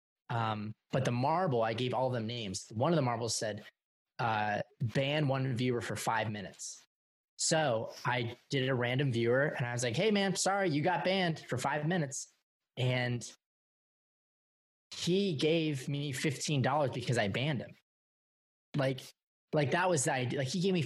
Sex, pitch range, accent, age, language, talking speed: male, 125-160 Hz, American, 20-39, English, 175 wpm